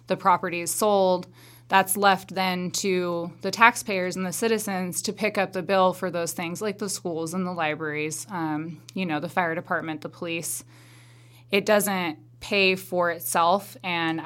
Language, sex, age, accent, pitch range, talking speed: English, female, 20-39, American, 165-195 Hz, 175 wpm